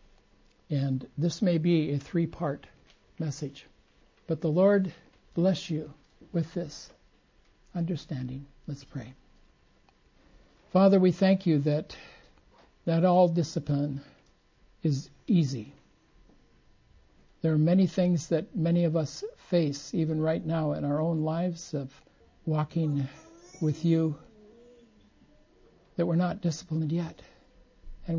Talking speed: 115 wpm